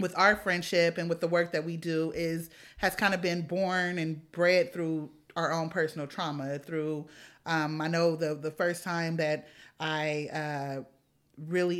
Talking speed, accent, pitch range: 180 wpm, American, 150-170 Hz